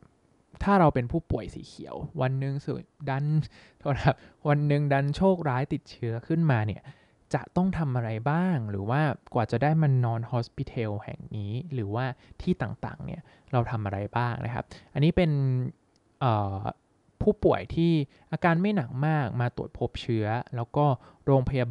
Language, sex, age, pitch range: Thai, male, 20-39, 115-150 Hz